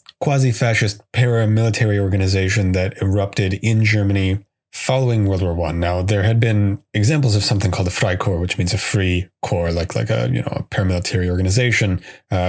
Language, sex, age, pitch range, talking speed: English, male, 30-49, 95-115 Hz, 170 wpm